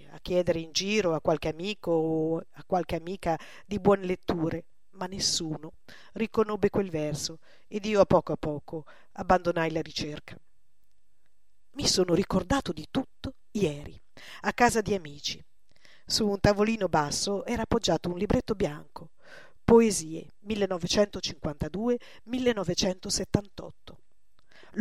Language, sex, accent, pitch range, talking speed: Italian, female, native, 165-215 Hz, 120 wpm